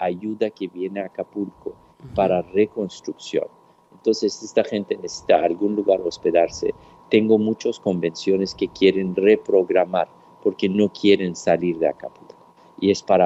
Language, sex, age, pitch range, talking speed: Spanish, male, 50-69, 85-105 Hz, 135 wpm